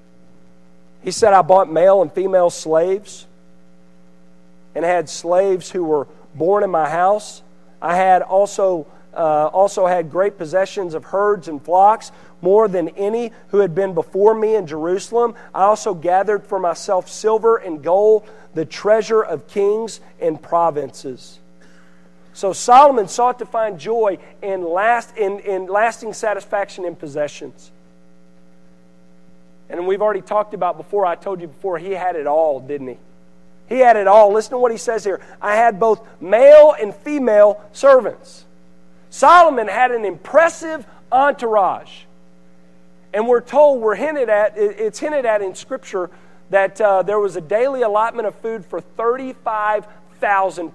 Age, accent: 40-59, American